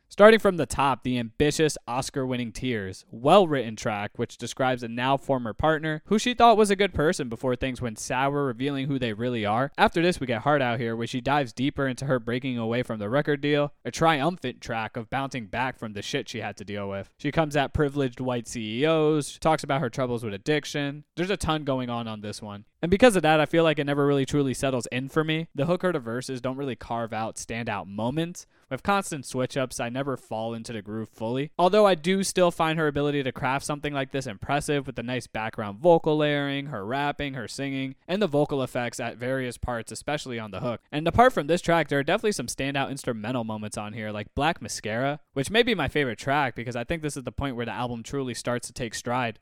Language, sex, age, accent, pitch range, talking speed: English, male, 20-39, American, 120-150 Hz, 230 wpm